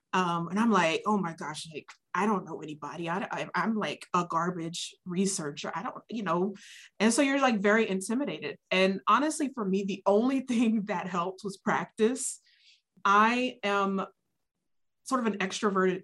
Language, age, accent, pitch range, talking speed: English, 20-39, American, 170-210 Hz, 165 wpm